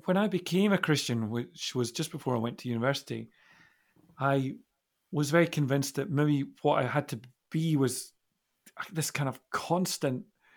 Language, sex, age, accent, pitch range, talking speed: English, male, 40-59, British, 130-160 Hz, 165 wpm